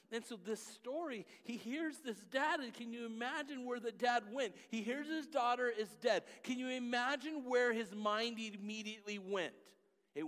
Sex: male